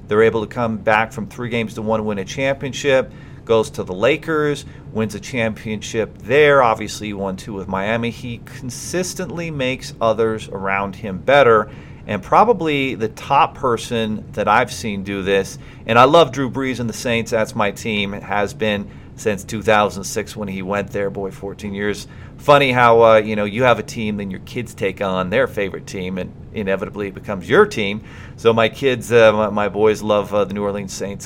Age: 40-59